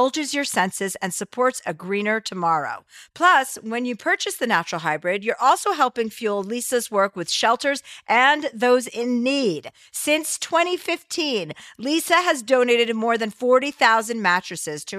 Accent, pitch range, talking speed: American, 185-255 Hz, 150 wpm